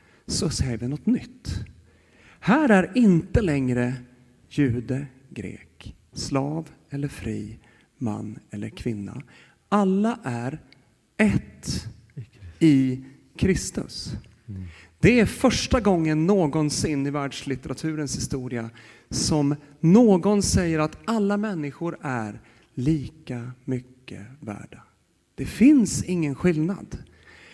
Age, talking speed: 40-59, 95 wpm